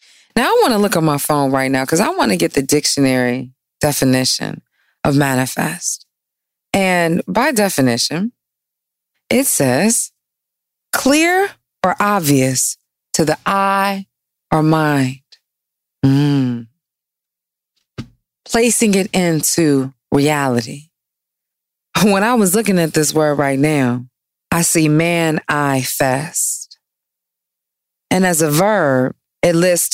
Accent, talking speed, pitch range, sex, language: American, 115 wpm, 120-195 Hz, female, English